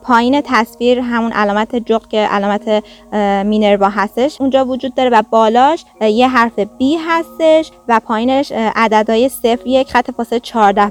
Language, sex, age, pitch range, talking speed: Persian, female, 20-39, 230-300 Hz, 130 wpm